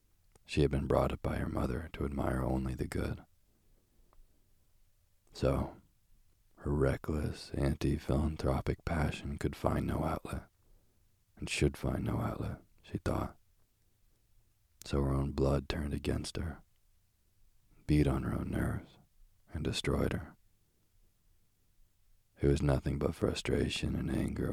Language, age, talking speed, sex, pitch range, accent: English, 40-59, 125 wpm, male, 75-95 Hz, American